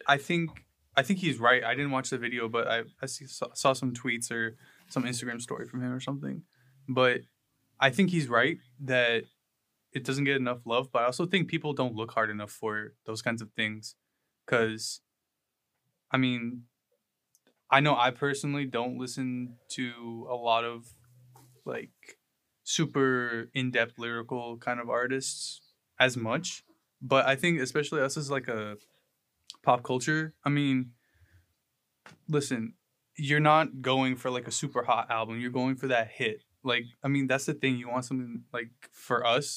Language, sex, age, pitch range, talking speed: English, male, 20-39, 120-140 Hz, 175 wpm